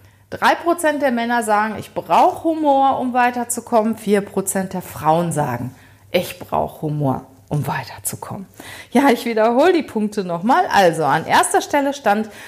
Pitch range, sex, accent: 170-255 Hz, female, German